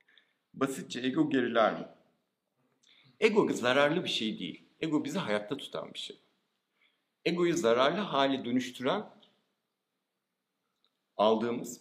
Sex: male